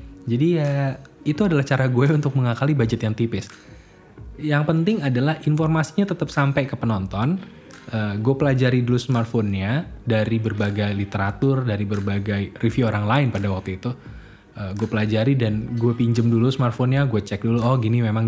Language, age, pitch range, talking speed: Indonesian, 20-39, 110-140 Hz, 160 wpm